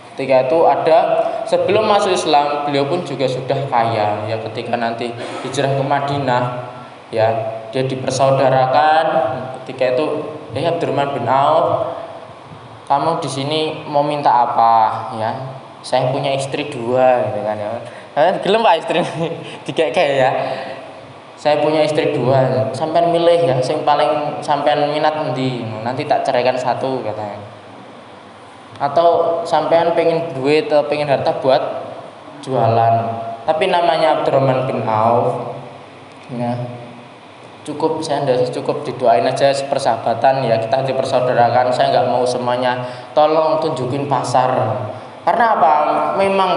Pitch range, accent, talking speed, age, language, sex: 125-155 Hz, native, 125 wpm, 20-39, Indonesian, male